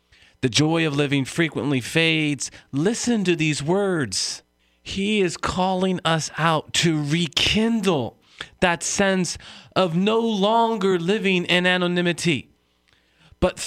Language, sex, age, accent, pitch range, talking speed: English, male, 40-59, American, 115-180 Hz, 115 wpm